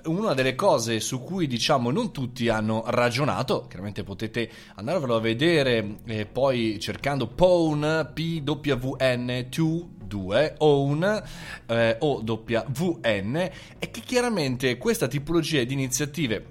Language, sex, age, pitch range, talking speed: Italian, male, 30-49, 115-150 Hz, 115 wpm